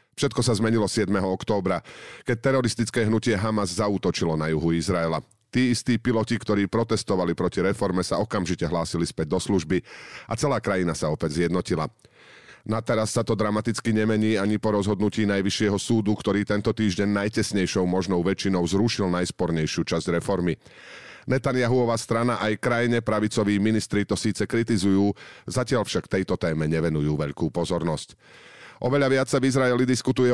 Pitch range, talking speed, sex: 90-115 Hz, 150 wpm, male